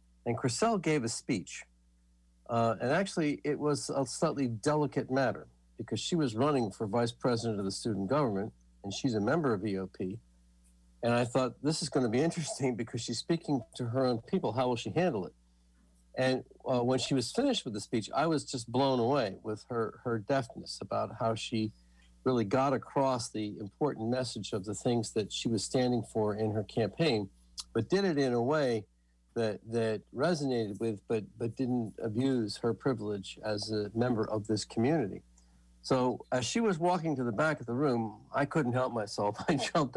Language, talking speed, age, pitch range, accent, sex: English, 195 wpm, 50-69, 105-135 Hz, American, male